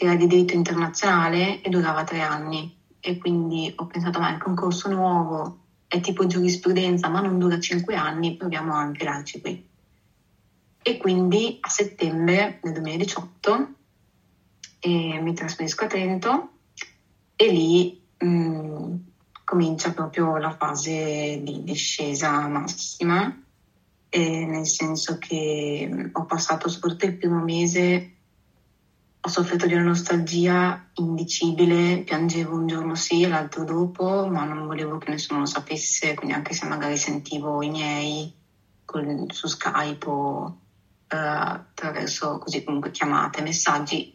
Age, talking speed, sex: 20-39, 130 wpm, female